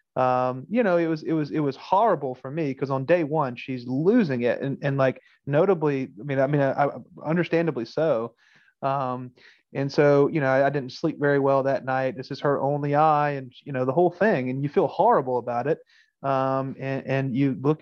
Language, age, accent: English, 30-49, American